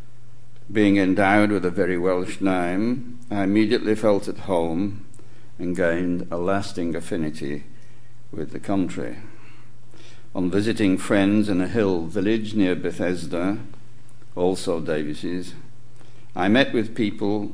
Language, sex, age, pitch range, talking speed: English, male, 60-79, 90-120 Hz, 120 wpm